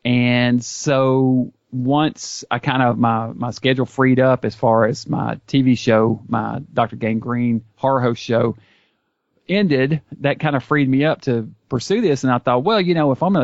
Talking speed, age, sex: 190 wpm, 40-59, male